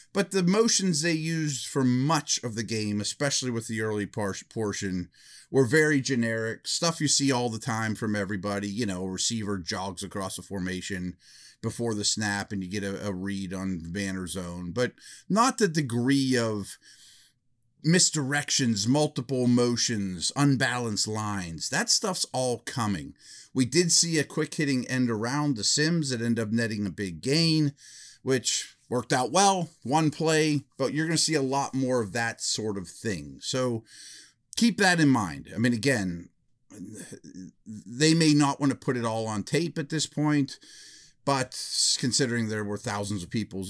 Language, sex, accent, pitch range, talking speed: English, male, American, 105-140 Hz, 170 wpm